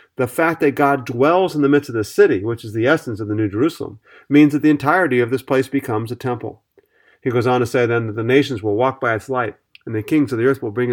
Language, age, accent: English, 40-59, American